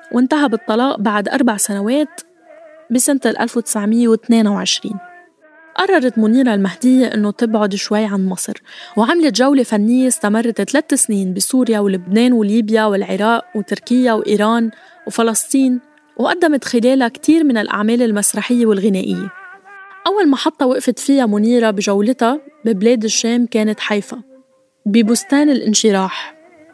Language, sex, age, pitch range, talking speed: Arabic, female, 10-29, 215-280 Hz, 105 wpm